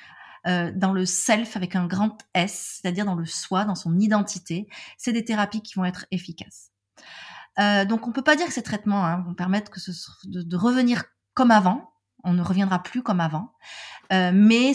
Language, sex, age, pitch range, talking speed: French, female, 30-49, 180-225 Hz, 205 wpm